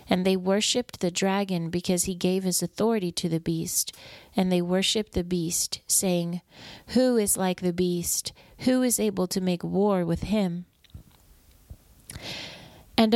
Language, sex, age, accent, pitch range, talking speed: English, female, 30-49, American, 175-200 Hz, 150 wpm